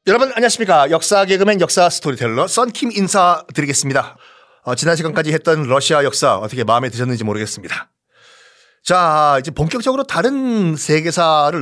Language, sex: Korean, male